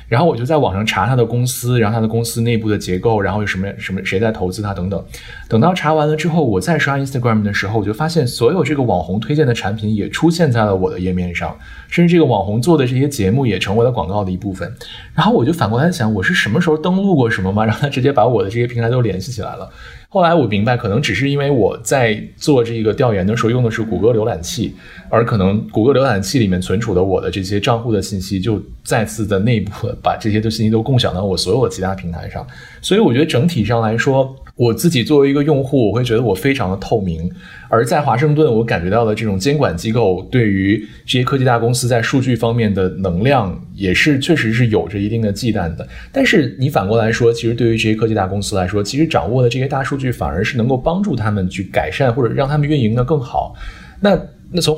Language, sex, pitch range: Chinese, male, 100-135 Hz